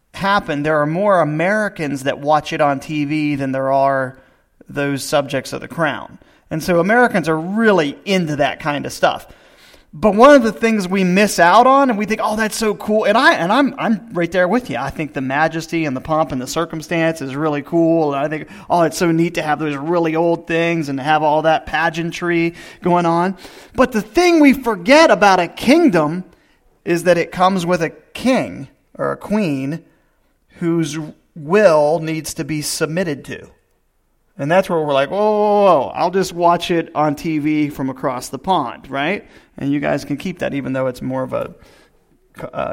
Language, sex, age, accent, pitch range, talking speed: English, male, 30-49, American, 150-200 Hz, 200 wpm